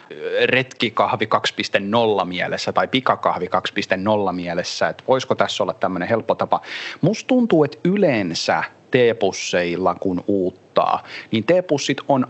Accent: native